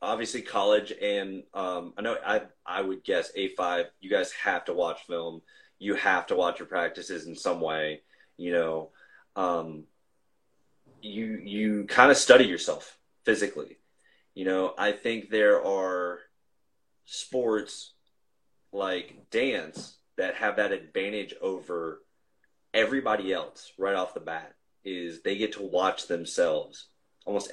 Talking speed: 140 wpm